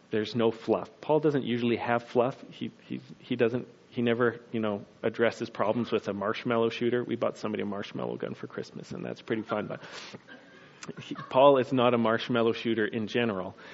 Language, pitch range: English, 105-125 Hz